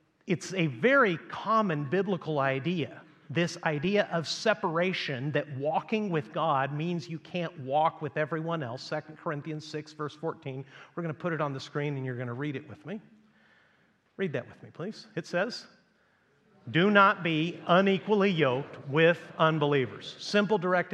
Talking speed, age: 165 wpm, 50-69